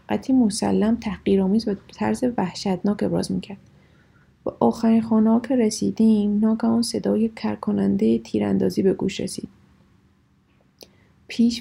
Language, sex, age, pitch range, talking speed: Persian, female, 30-49, 190-225 Hz, 115 wpm